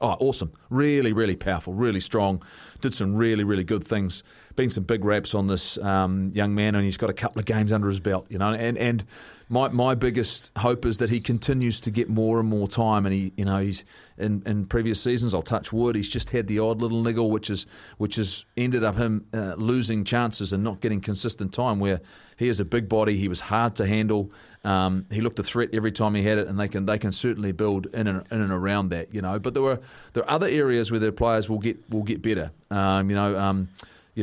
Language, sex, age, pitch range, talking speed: English, male, 30-49, 100-115 Hz, 240 wpm